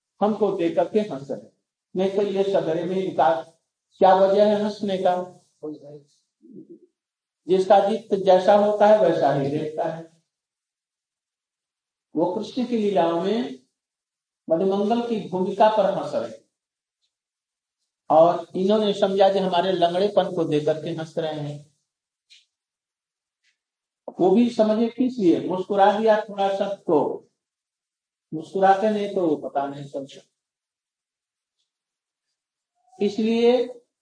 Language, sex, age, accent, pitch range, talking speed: Hindi, male, 50-69, native, 165-210 Hz, 110 wpm